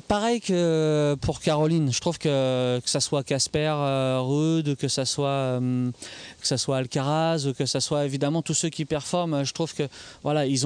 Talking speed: 195 wpm